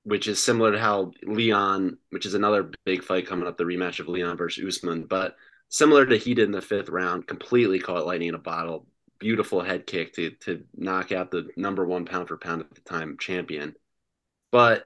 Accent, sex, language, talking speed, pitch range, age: American, male, English, 210 wpm, 90-110 Hz, 30-49